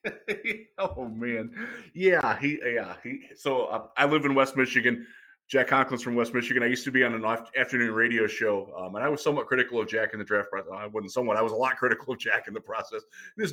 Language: English